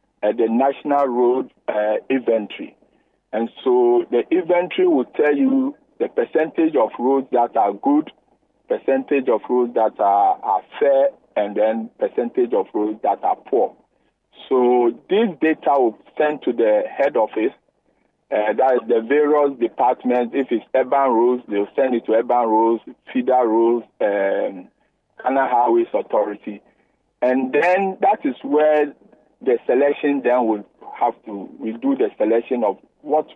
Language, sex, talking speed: English, male, 150 wpm